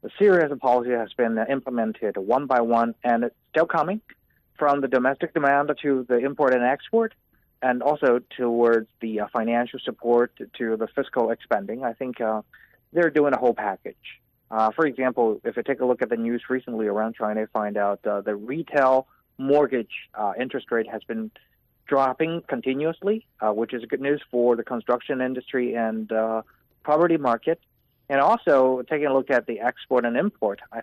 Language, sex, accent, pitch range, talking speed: English, male, American, 115-145 Hz, 180 wpm